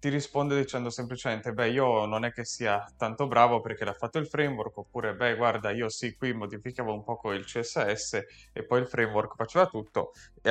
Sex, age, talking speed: male, 10-29, 200 wpm